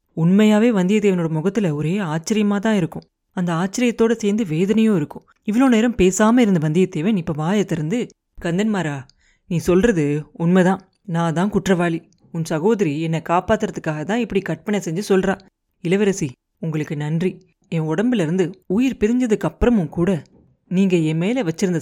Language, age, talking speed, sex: Tamil, 30-49, 130 wpm, female